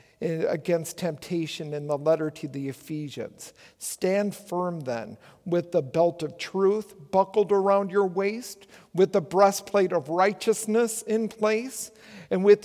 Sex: male